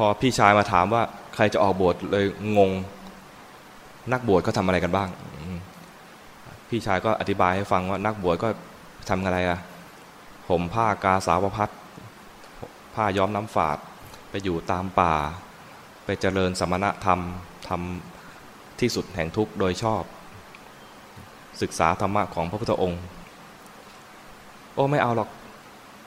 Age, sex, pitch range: 20-39, male, 95-110 Hz